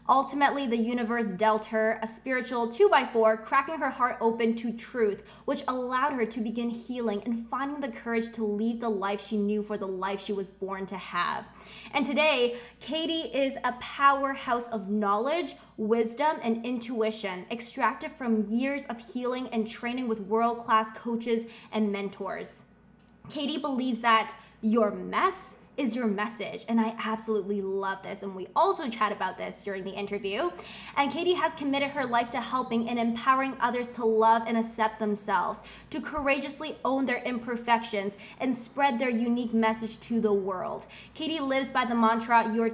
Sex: female